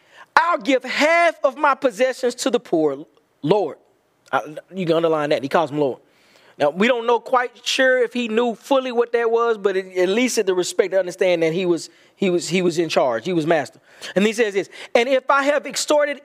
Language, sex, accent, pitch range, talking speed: English, male, American, 230-310 Hz, 220 wpm